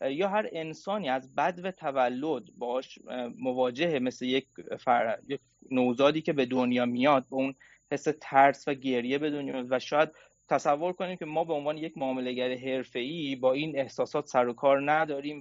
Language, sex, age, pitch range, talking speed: Persian, male, 30-49, 125-155 Hz, 170 wpm